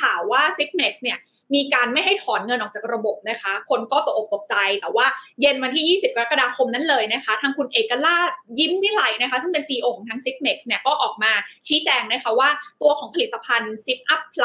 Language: Thai